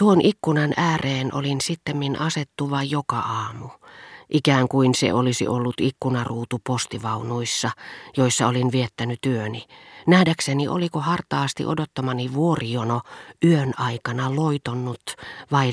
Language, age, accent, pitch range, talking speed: Finnish, 40-59, native, 125-155 Hz, 105 wpm